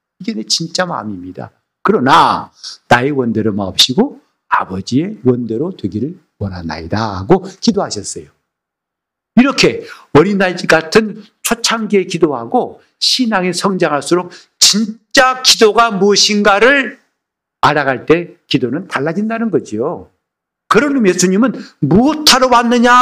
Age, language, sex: 50-69, Korean, male